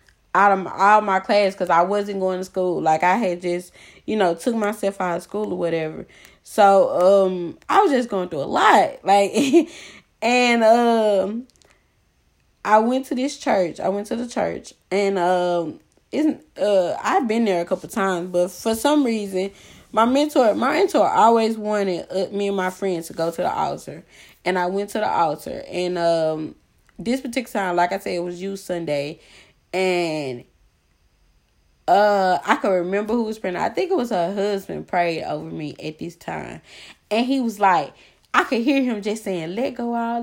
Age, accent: 20-39, American